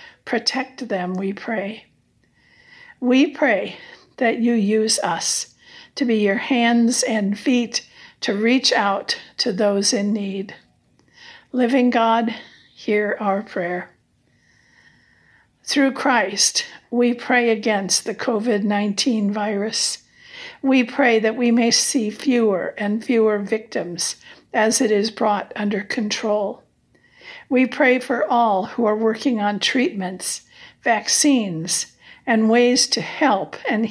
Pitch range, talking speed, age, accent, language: 210-255 Hz, 120 wpm, 60-79, American, English